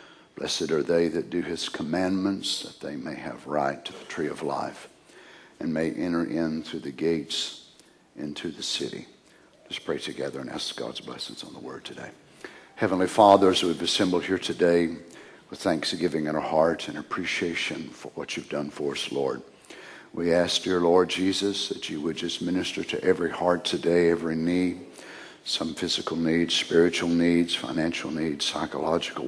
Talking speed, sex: 170 wpm, male